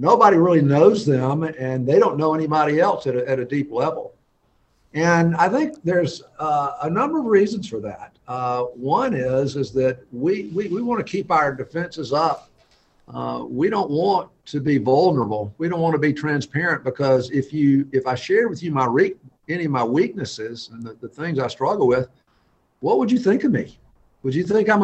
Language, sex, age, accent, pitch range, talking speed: English, male, 50-69, American, 135-190 Hz, 205 wpm